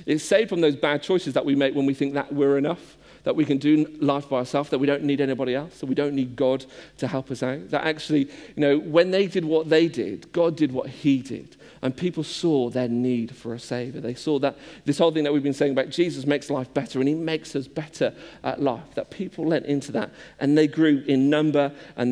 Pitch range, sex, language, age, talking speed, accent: 135-170 Hz, male, English, 40-59, 250 wpm, British